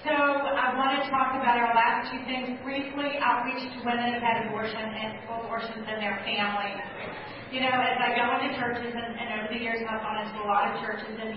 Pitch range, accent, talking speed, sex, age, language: 205-230 Hz, American, 225 wpm, male, 40-59, English